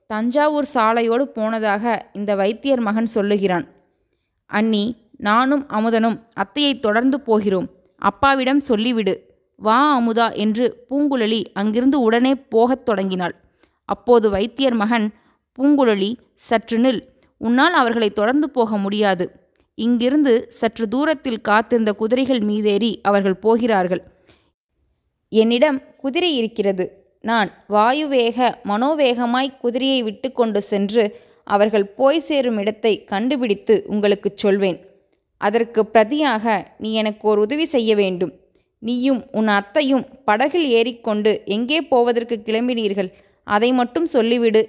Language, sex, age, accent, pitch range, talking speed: Tamil, female, 20-39, native, 205-255 Hz, 105 wpm